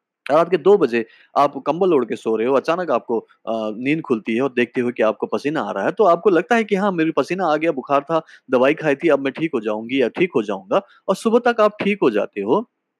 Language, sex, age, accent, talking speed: Hindi, male, 30-49, native, 265 wpm